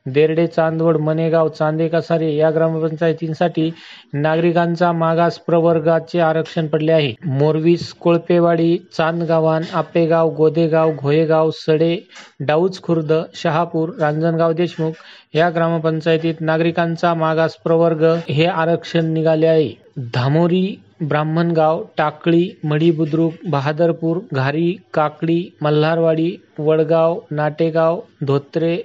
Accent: native